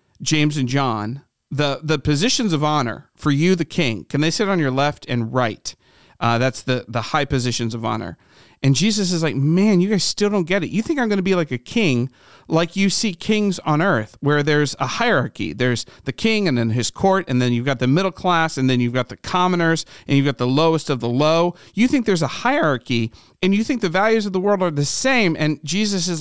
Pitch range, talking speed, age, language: 135-190 Hz, 240 wpm, 40-59, English